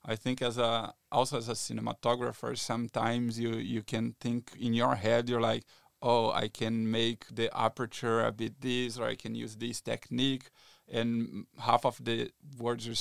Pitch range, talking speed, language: 115-130 Hz, 180 wpm, English